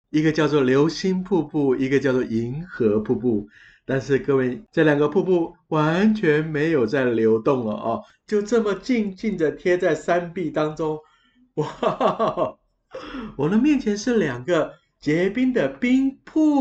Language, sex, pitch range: Chinese, male, 145-215 Hz